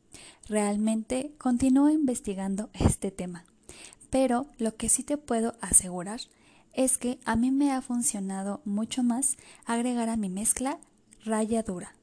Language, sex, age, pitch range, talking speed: Spanish, female, 10-29, 205-265 Hz, 130 wpm